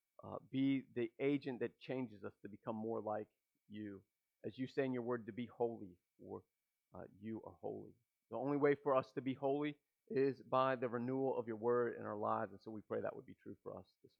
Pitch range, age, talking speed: 110-140 Hz, 40-59, 235 wpm